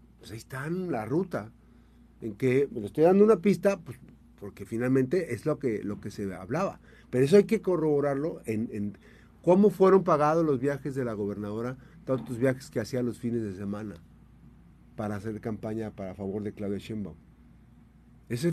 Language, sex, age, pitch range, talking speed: Spanish, male, 50-69, 110-155 Hz, 180 wpm